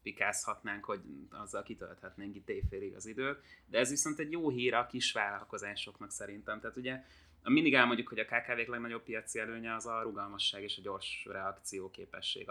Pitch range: 100-120 Hz